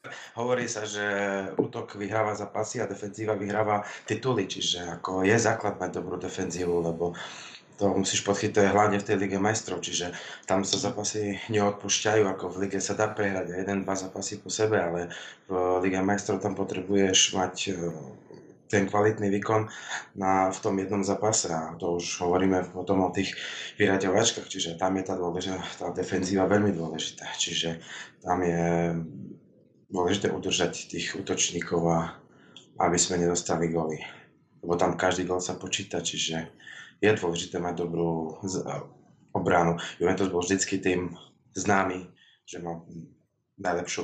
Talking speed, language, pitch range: 145 wpm, English, 85-100 Hz